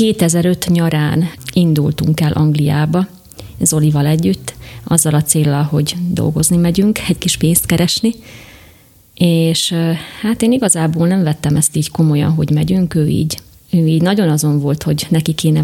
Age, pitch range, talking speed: 30-49, 150-170 Hz, 140 wpm